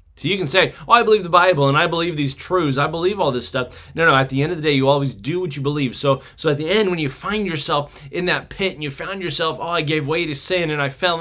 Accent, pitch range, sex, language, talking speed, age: American, 115-170 Hz, male, English, 310 wpm, 20-39